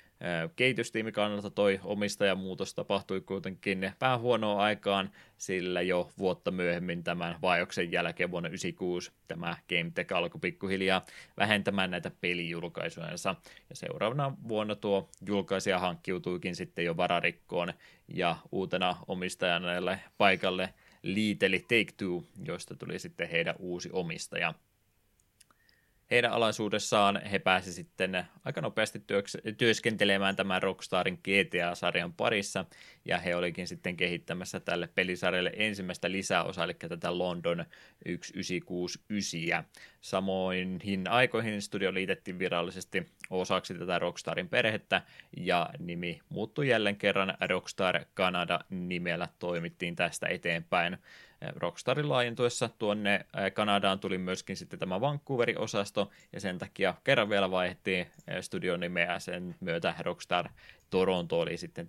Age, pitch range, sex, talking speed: 20-39, 90-100 Hz, male, 110 wpm